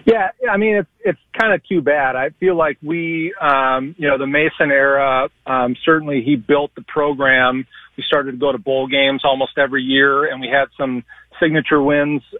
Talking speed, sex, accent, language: 200 wpm, male, American, English